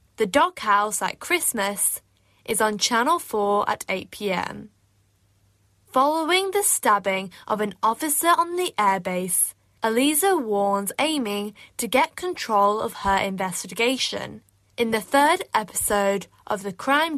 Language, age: English, 10-29